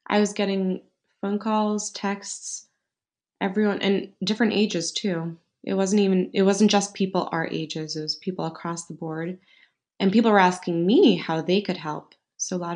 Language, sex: English, female